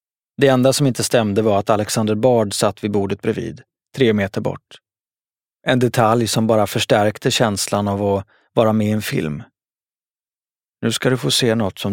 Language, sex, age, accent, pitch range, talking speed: Swedish, male, 30-49, native, 100-125 Hz, 180 wpm